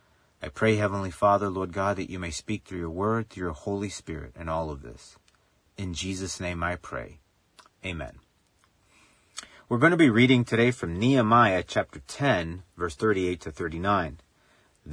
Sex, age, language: male, 40-59, English